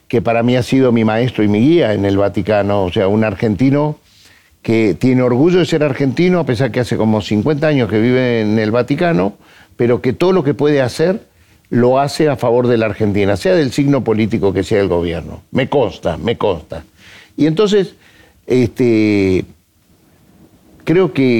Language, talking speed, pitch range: Spanish, 190 wpm, 105-140 Hz